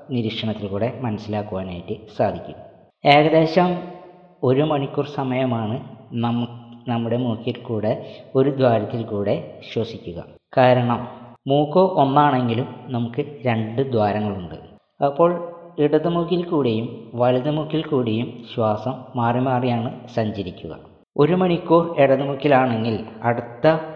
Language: Malayalam